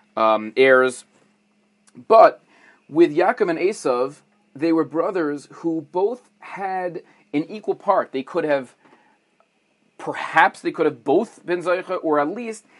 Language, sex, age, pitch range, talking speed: English, male, 40-59, 135-195 Hz, 135 wpm